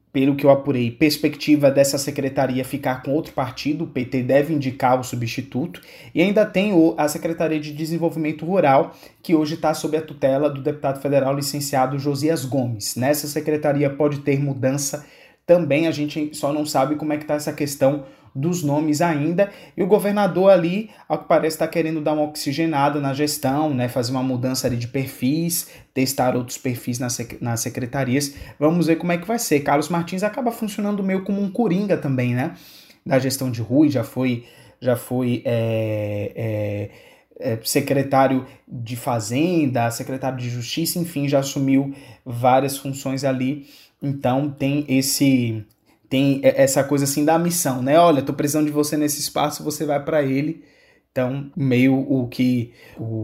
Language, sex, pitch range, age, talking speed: Portuguese, male, 130-155 Hz, 20-39, 170 wpm